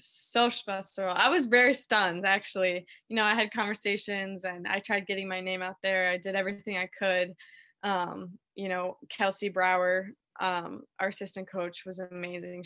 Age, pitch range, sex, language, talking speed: 20-39, 185-210 Hz, female, English, 170 wpm